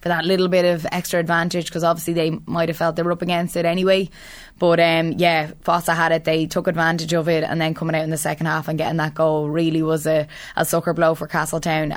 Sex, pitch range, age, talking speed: female, 160-180 Hz, 20-39, 250 wpm